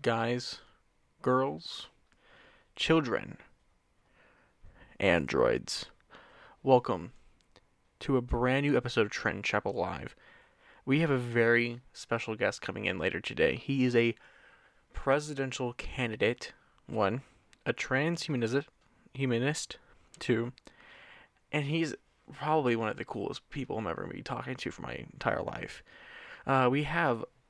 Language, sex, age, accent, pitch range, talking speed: English, male, 20-39, American, 120-145 Hz, 120 wpm